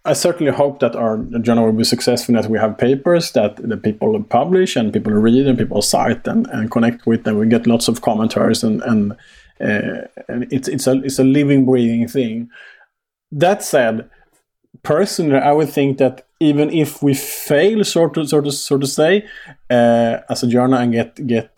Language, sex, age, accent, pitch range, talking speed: English, male, 30-49, Norwegian, 115-140 Hz, 195 wpm